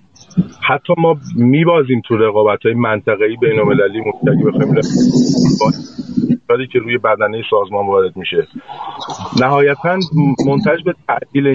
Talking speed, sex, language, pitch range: 115 wpm, male, Persian, 120-200 Hz